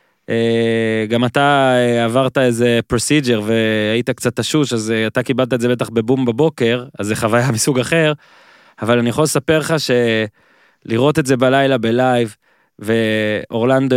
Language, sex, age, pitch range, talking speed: Hebrew, male, 20-39, 115-135 Hz, 140 wpm